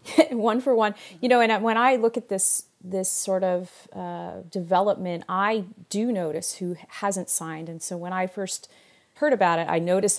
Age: 40-59